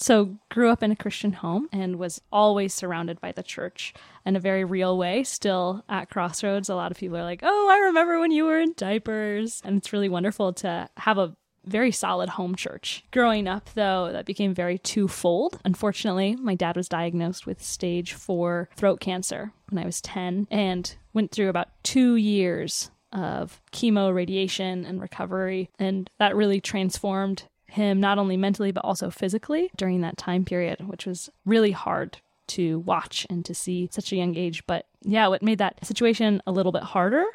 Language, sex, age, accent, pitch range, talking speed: English, female, 10-29, American, 185-210 Hz, 190 wpm